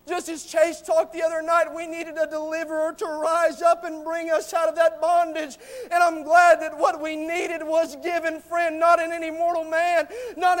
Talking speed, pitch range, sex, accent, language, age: 210 wpm, 295-335 Hz, male, American, English, 40-59